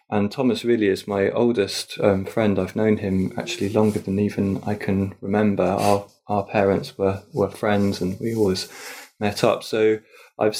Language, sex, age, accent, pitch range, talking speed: English, male, 20-39, British, 100-115 Hz, 175 wpm